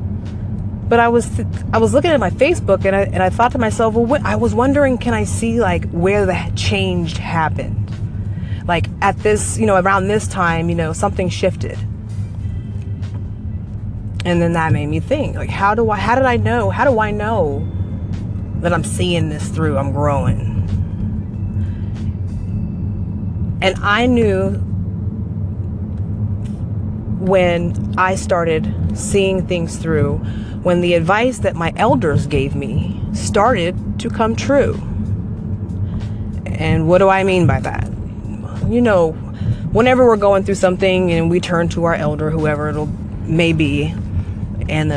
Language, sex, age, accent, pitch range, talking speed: English, female, 30-49, American, 100-165 Hz, 150 wpm